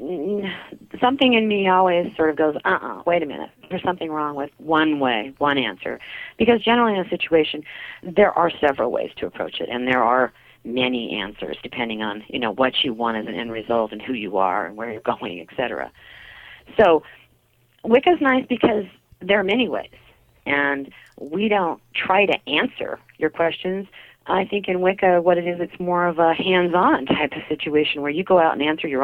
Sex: female